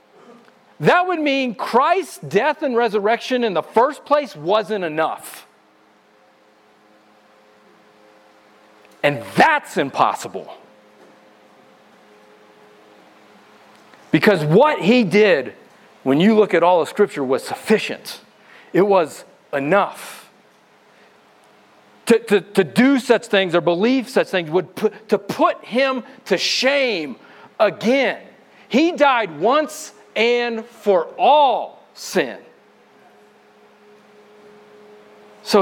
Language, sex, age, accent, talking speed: English, male, 40-59, American, 95 wpm